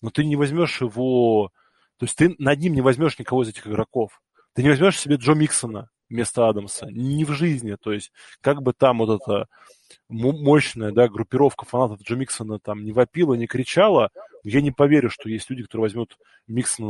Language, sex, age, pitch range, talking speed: Russian, male, 20-39, 115-150 Hz, 190 wpm